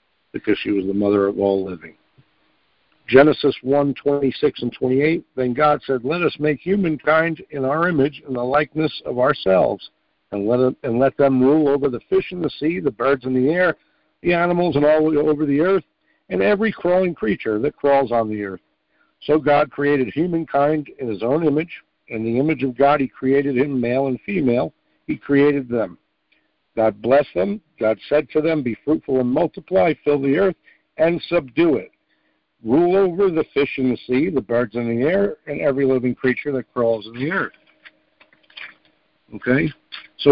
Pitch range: 125-155 Hz